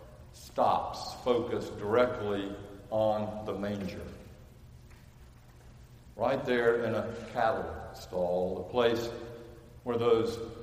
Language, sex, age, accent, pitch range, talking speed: English, male, 60-79, American, 100-120 Hz, 90 wpm